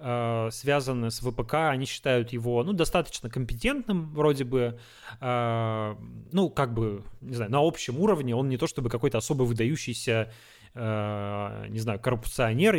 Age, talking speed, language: 20-39, 135 wpm, Russian